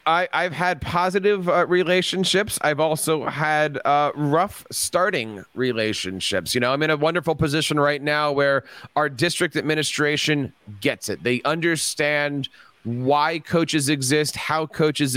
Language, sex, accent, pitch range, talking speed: English, male, American, 135-180 Hz, 135 wpm